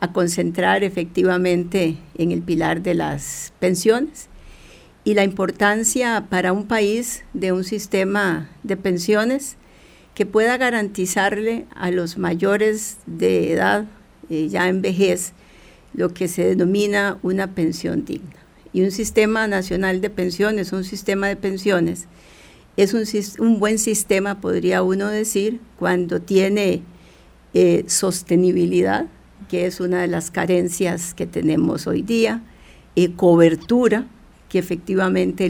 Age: 50-69